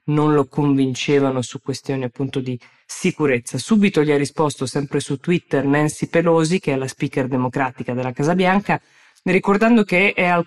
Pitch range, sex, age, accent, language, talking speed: 135-160 Hz, female, 20-39, native, Italian, 165 wpm